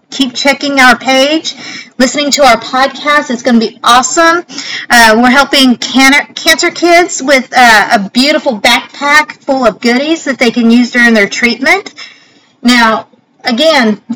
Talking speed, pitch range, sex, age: 155 wpm, 235-285 Hz, female, 50-69